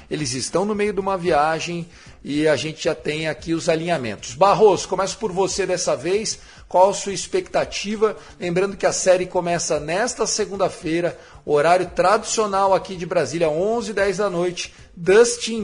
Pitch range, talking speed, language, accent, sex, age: 165-195 Hz, 155 wpm, Portuguese, Brazilian, male, 40-59